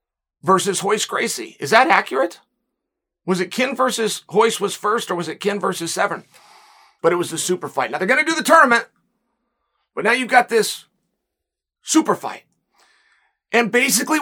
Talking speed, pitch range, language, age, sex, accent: 175 wpm, 195-250 Hz, English, 40-59, male, American